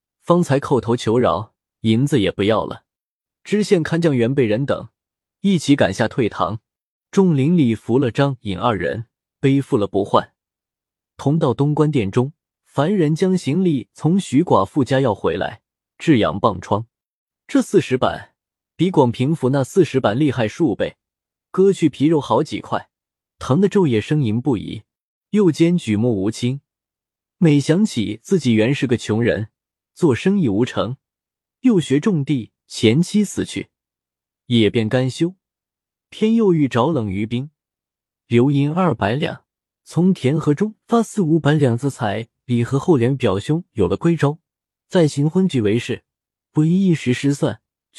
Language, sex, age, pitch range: Chinese, male, 20-39, 115-165 Hz